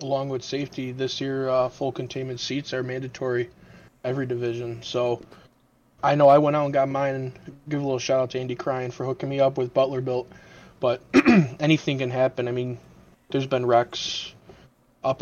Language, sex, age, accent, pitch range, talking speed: English, male, 20-39, American, 125-135 Hz, 185 wpm